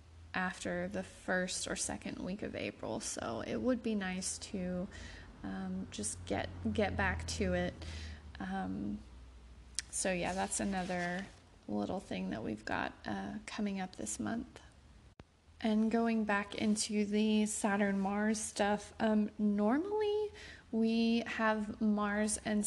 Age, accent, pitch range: 30-49, American, 175-215 Hz